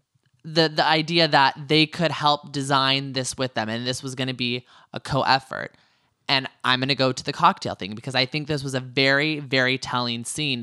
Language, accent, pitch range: English, American, 125-155 Hz